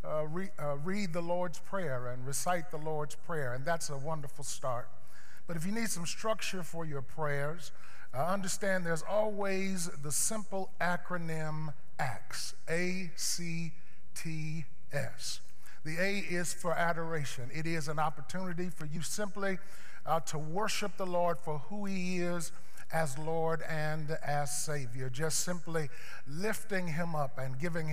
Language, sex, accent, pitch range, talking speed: English, male, American, 150-185 Hz, 145 wpm